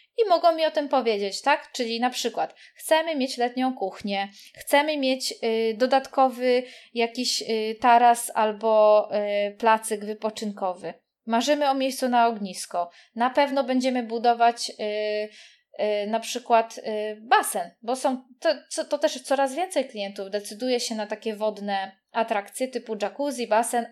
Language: Polish